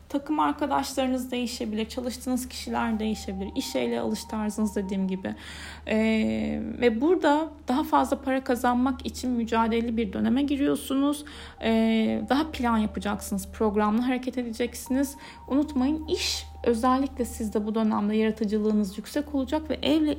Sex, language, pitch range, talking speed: female, Turkish, 205-255 Hz, 120 wpm